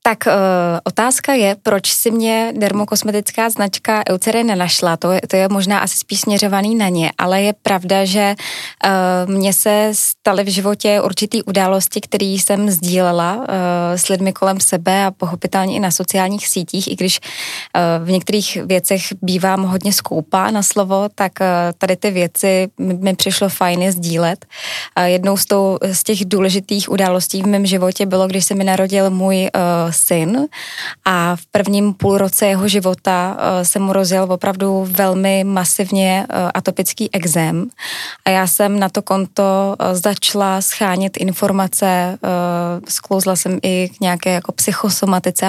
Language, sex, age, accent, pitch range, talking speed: Czech, female, 20-39, native, 180-200 Hz, 145 wpm